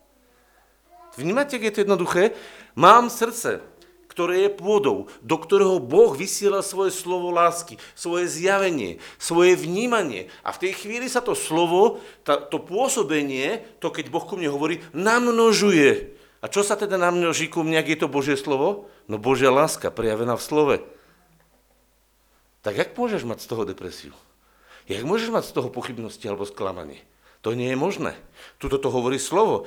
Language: Slovak